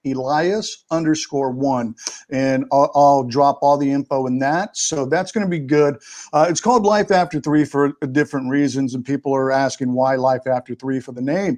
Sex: male